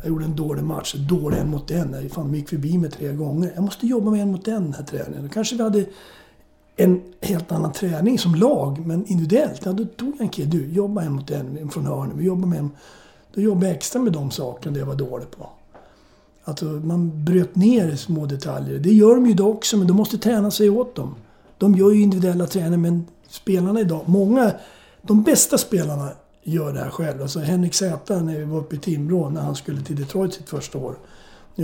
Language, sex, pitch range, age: English, male, 150-195 Hz, 60-79